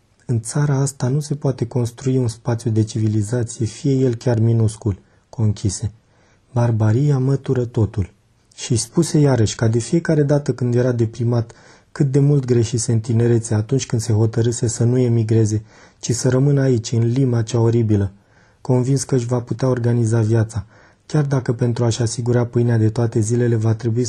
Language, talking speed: Romanian, 165 wpm